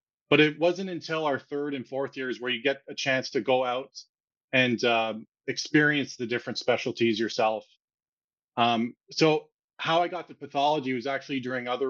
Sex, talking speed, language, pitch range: male, 175 wpm, English, 125-155 Hz